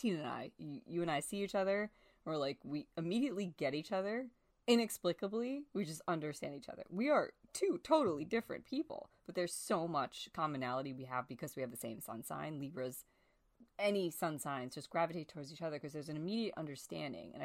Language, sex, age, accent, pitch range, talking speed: English, female, 20-39, American, 140-200 Hz, 195 wpm